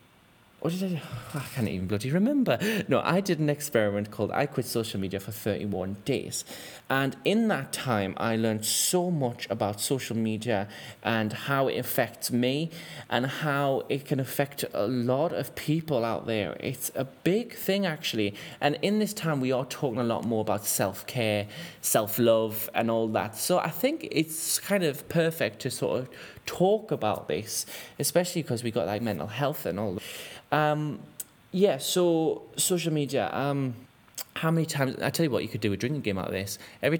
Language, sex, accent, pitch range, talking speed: English, male, British, 110-150 Hz, 190 wpm